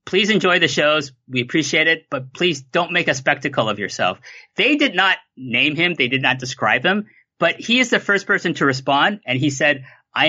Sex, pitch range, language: male, 125-185 Hz, English